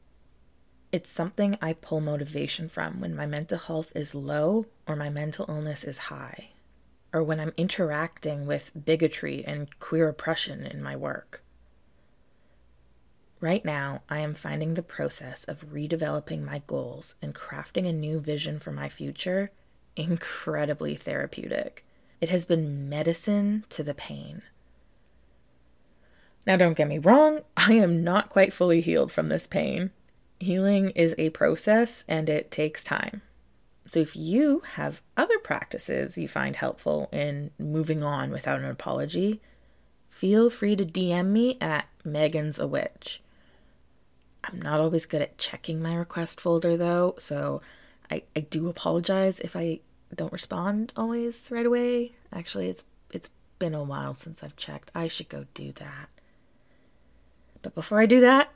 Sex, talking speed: female, 150 wpm